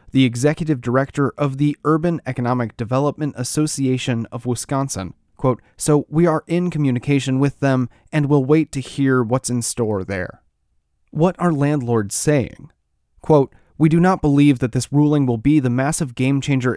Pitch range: 120-150 Hz